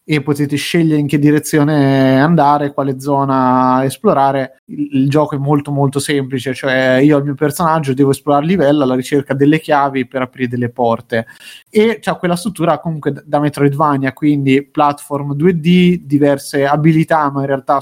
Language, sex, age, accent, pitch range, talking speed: Italian, male, 30-49, native, 135-155 Hz, 170 wpm